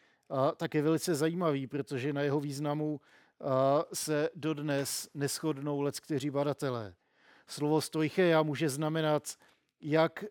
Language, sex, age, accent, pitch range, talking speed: Czech, male, 40-59, native, 140-160 Hz, 105 wpm